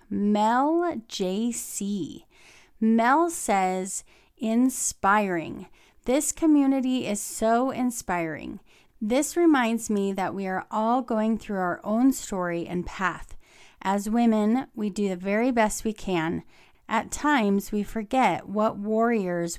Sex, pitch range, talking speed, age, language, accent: female, 185-235 Hz, 120 wpm, 30-49, English, American